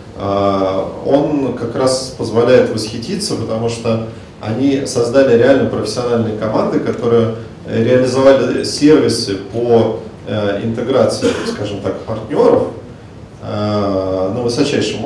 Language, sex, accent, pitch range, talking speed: Russian, male, native, 105-130 Hz, 90 wpm